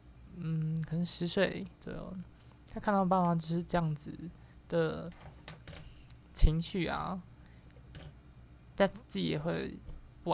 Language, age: Chinese, 20-39